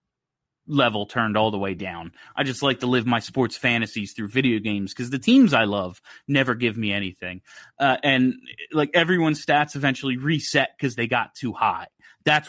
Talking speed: 185 wpm